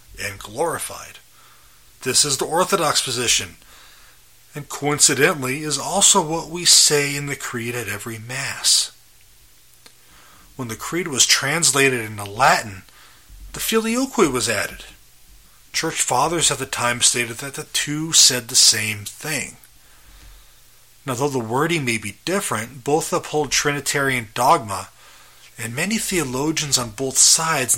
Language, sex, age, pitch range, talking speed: English, male, 30-49, 120-150 Hz, 130 wpm